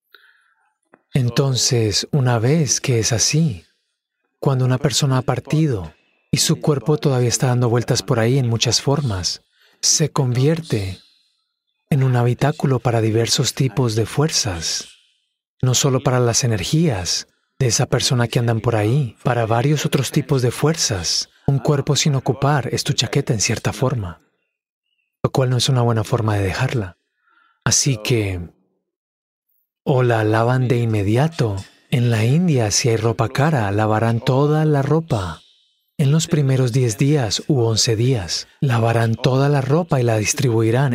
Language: Spanish